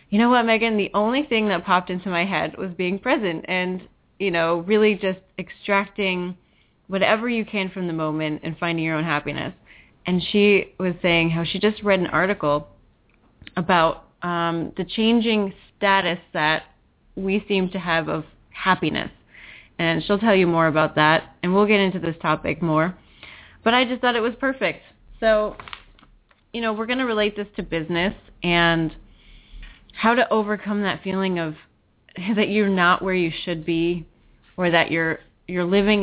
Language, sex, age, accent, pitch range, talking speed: English, female, 20-39, American, 165-210 Hz, 175 wpm